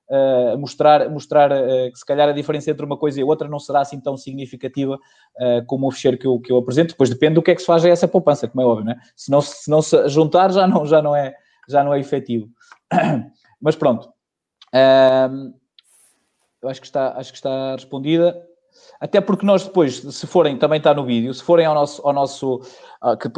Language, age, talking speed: Portuguese, 20-39, 225 wpm